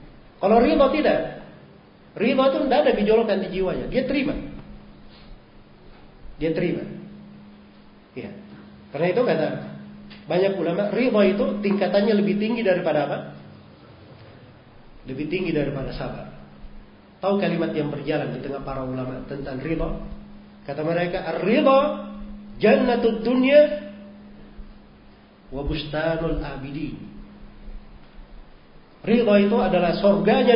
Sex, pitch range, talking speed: male, 140-210 Hz, 105 wpm